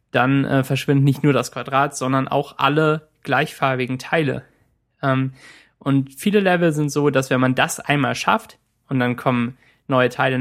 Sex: male